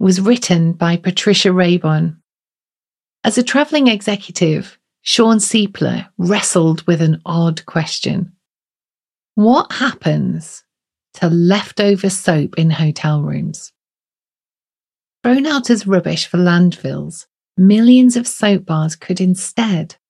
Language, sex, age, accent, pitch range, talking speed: English, female, 40-59, British, 175-210 Hz, 105 wpm